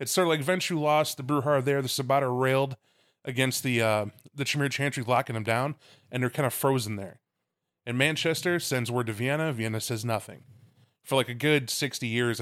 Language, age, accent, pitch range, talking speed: English, 20-39, American, 115-145 Hz, 210 wpm